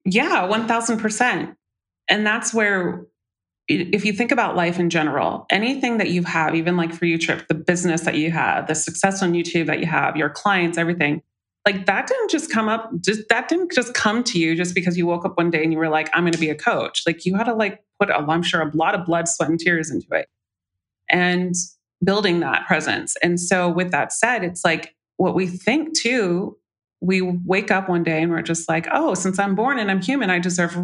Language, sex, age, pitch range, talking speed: English, female, 30-49, 165-210 Hz, 230 wpm